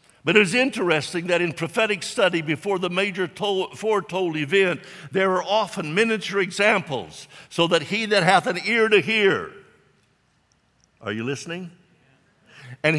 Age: 60-79